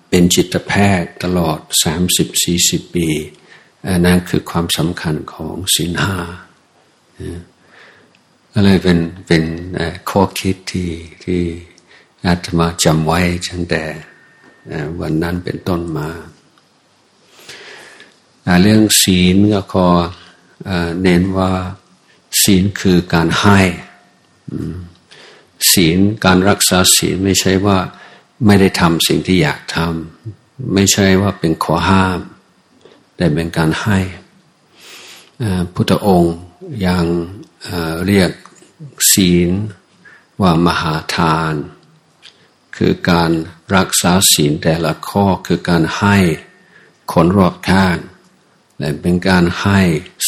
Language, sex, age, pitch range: Thai, male, 60-79, 85-95 Hz